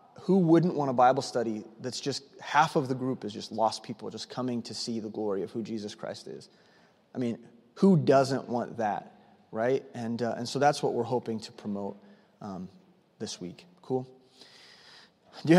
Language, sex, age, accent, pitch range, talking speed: English, male, 30-49, American, 120-160 Hz, 190 wpm